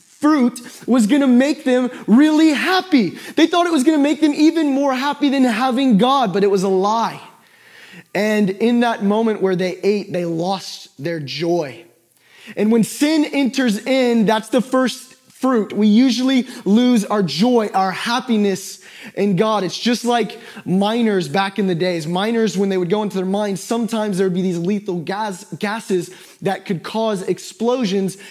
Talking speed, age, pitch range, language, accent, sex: 175 wpm, 20-39, 195-245 Hz, English, American, male